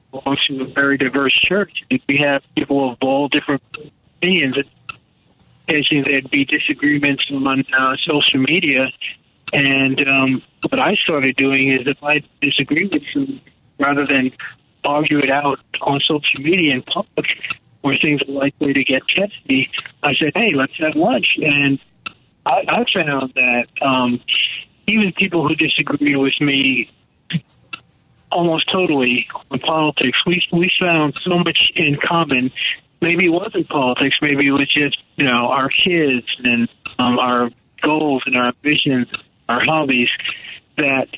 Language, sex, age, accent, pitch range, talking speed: English, male, 40-59, American, 135-160 Hz, 145 wpm